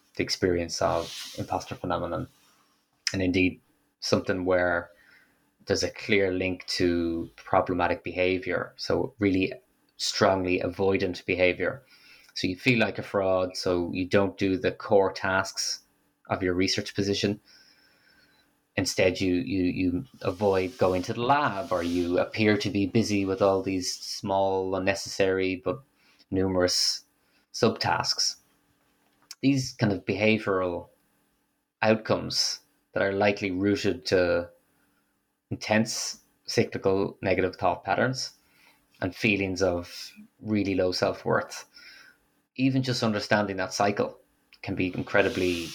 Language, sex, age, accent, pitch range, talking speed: English, male, 20-39, Irish, 90-100 Hz, 120 wpm